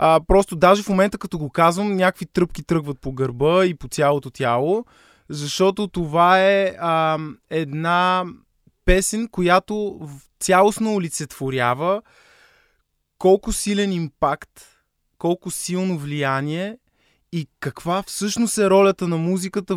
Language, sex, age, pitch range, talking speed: Bulgarian, male, 20-39, 130-185 Hz, 120 wpm